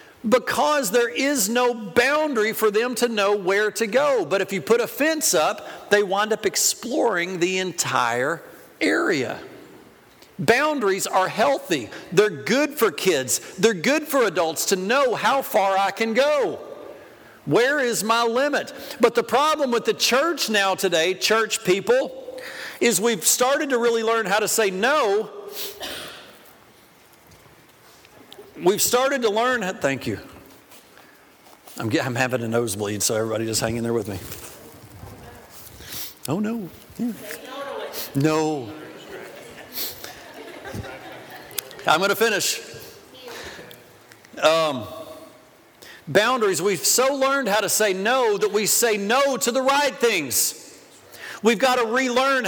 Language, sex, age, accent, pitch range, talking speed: English, male, 50-69, American, 195-270 Hz, 135 wpm